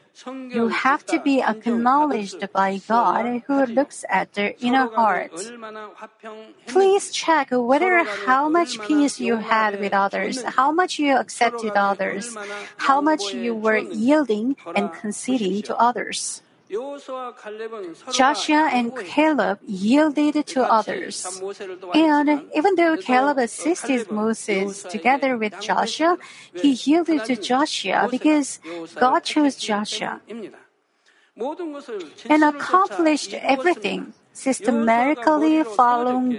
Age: 40-59